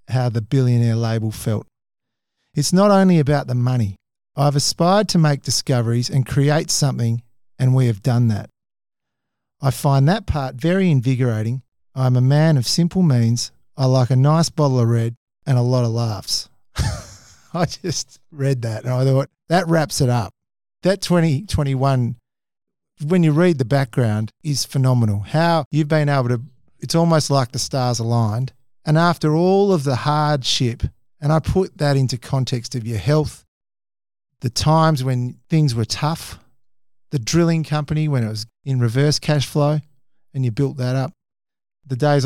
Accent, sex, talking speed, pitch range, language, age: Australian, male, 165 wpm, 120-150 Hz, English, 50-69